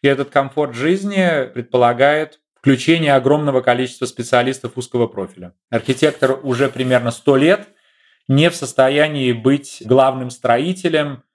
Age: 30-49